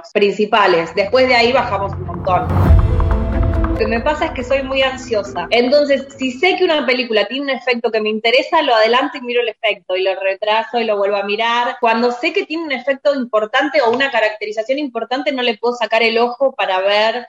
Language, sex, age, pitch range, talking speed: Spanish, female, 20-39, 210-270 Hz, 210 wpm